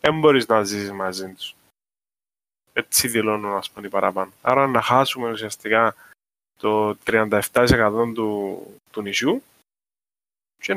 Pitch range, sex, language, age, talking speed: 110-165 Hz, male, Greek, 20-39, 115 wpm